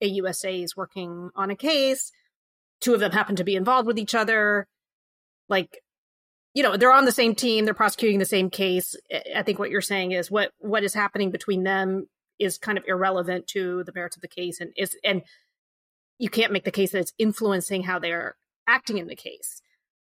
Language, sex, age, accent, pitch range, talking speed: English, female, 30-49, American, 195-245 Hz, 205 wpm